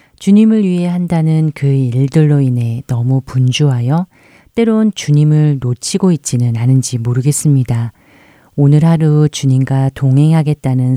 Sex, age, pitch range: female, 40-59, 130-160 Hz